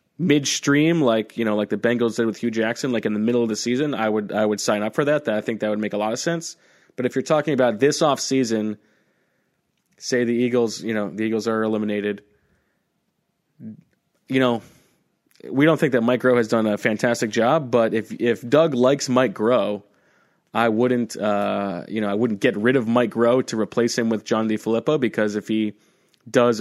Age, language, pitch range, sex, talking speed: 20-39, English, 105-130 Hz, male, 220 wpm